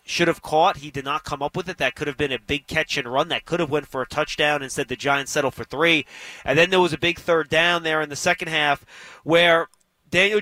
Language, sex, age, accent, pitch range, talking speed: English, male, 30-49, American, 150-195 Hz, 270 wpm